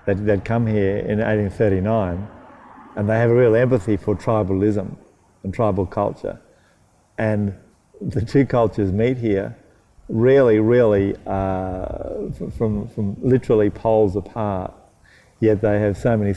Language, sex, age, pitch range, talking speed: English, male, 50-69, 95-110 Hz, 130 wpm